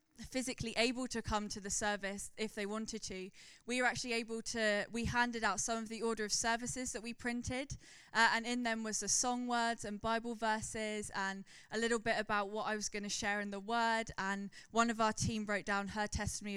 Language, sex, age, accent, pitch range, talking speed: English, female, 20-39, British, 210-245 Hz, 225 wpm